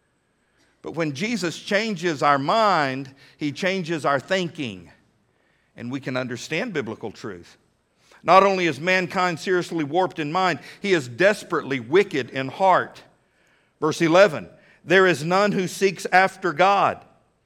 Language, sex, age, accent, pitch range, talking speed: English, male, 50-69, American, 190-255 Hz, 135 wpm